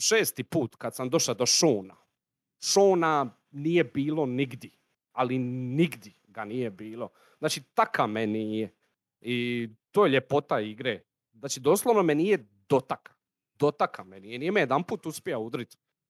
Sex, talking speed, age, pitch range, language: male, 145 wpm, 40-59, 115-155 Hz, Croatian